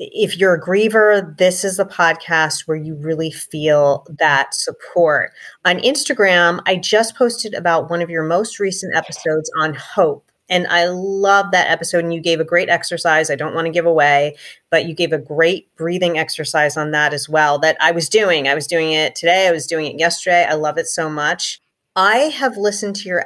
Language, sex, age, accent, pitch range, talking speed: English, female, 30-49, American, 155-200 Hz, 205 wpm